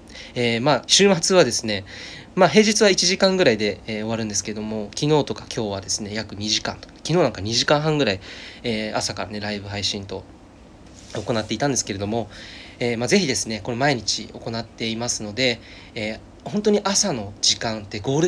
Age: 20-39